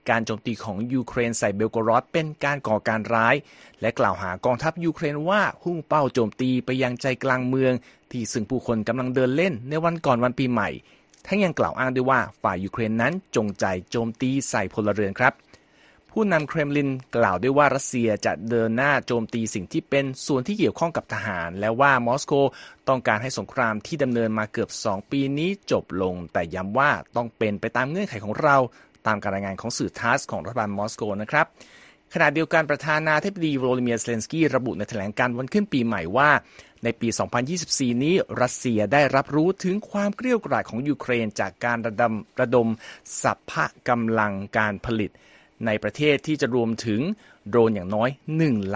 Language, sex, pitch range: Thai, male, 110-140 Hz